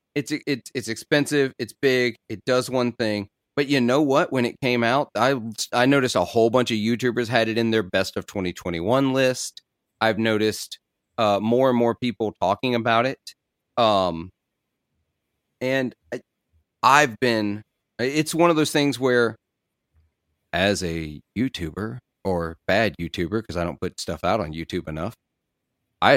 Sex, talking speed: male, 165 wpm